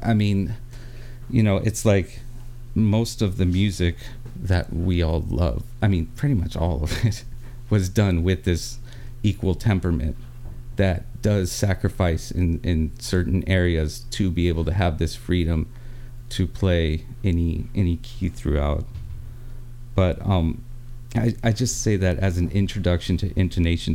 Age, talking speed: 40-59, 150 wpm